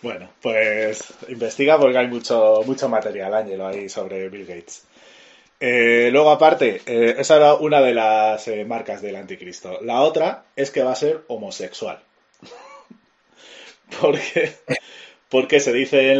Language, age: Spanish, 30-49